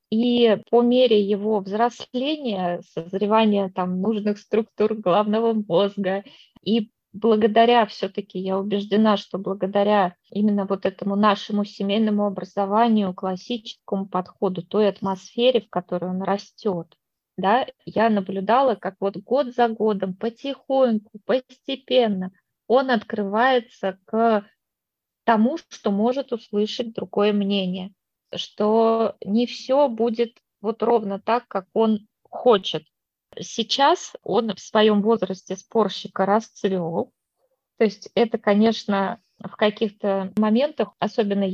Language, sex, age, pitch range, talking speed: Russian, female, 20-39, 195-230 Hz, 110 wpm